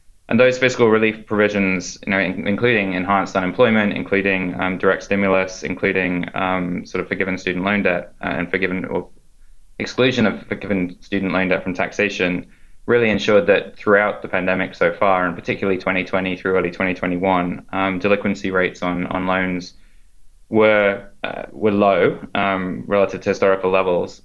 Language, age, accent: English, 20-39, Australian